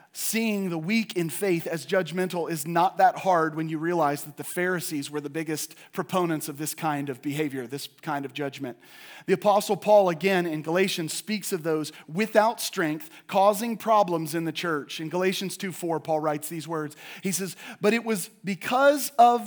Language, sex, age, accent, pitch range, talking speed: English, male, 40-59, American, 165-220 Hz, 185 wpm